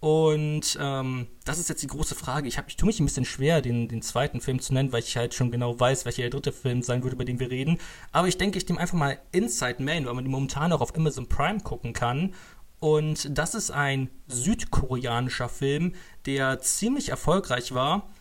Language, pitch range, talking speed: German, 130-165 Hz, 220 wpm